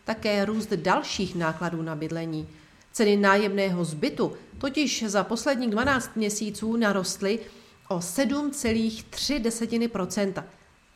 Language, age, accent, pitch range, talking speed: Czech, 40-59, native, 185-230 Hz, 95 wpm